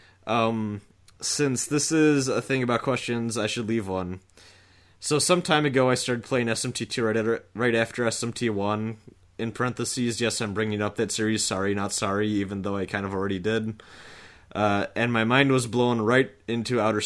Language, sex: English, male